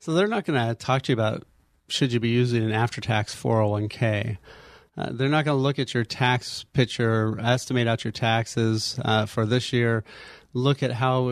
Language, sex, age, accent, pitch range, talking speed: English, male, 30-49, American, 115-135 Hz, 215 wpm